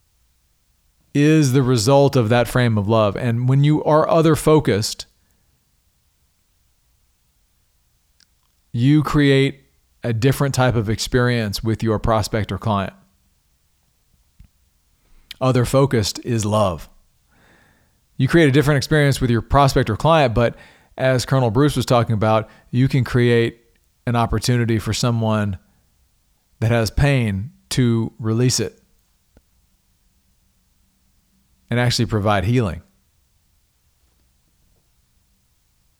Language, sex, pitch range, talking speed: English, male, 80-125 Hz, 105 wpm